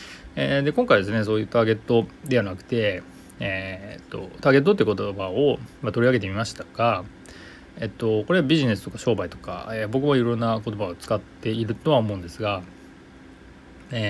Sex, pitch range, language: male, 95-125 Hz, Japanese